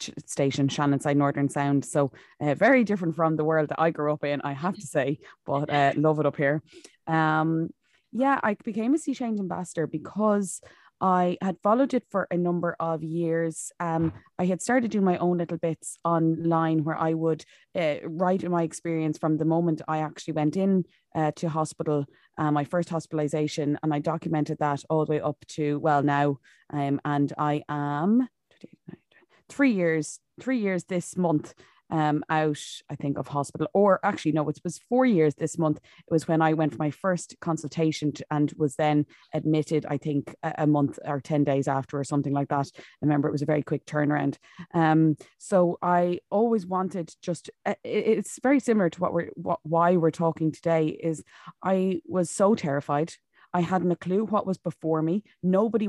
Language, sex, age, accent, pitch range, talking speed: English, female, 20-39, Irish, 150-180 Hz, 190 wpm